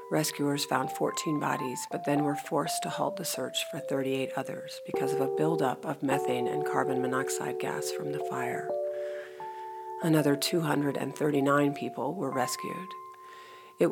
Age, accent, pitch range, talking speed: 50-69, American, 130-185 Hz, 145 wpm